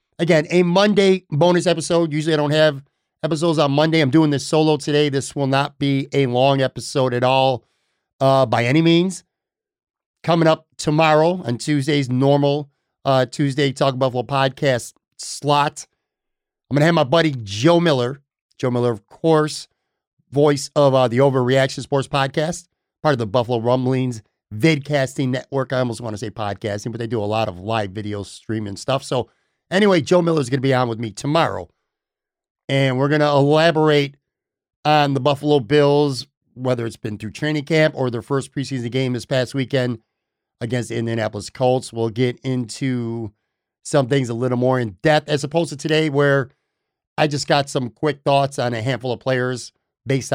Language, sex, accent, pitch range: English, male, American, 125-155 Hz